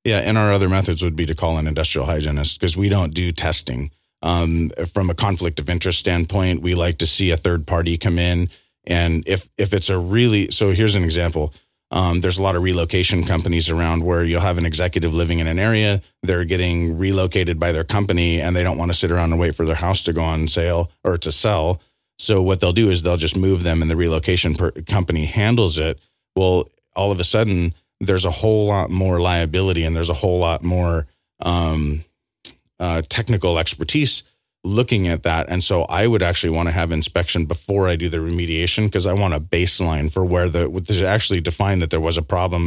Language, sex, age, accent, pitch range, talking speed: English, male, 30-49, American, 85-95 Hz, 220 wpm